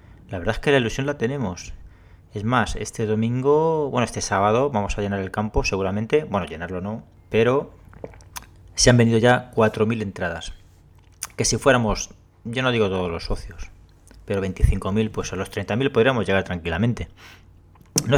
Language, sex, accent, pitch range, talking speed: Spanish, male, Spanish, 90-110 Hz, 165 wpm